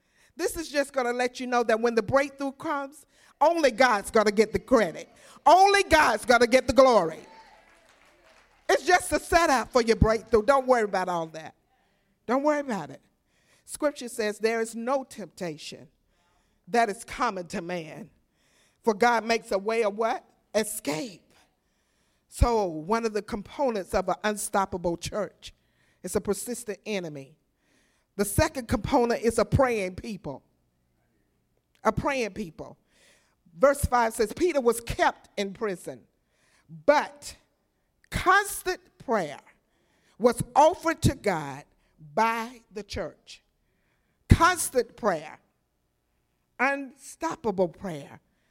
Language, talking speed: English, 130 wpm